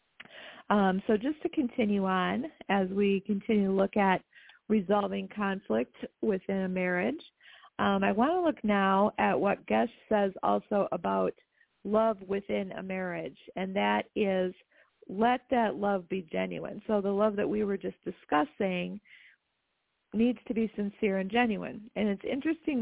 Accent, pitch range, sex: American, 190-235 Hz, female